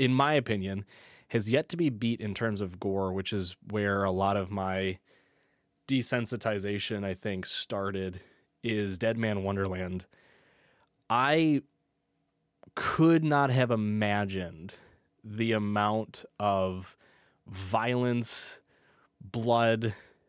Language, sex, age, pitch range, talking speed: English, male, 20-39, 100-125 Hz, 110 wpm